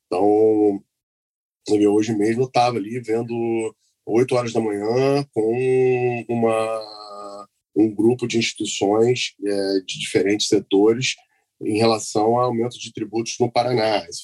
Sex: male